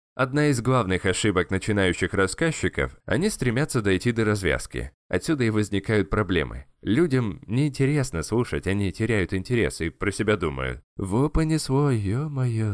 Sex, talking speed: male, 130 wpm